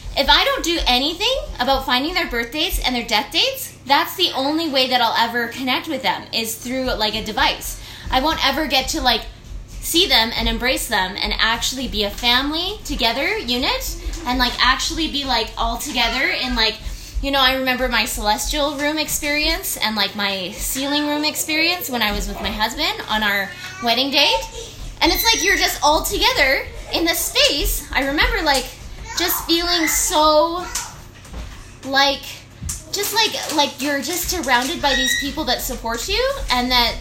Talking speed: 180 wpm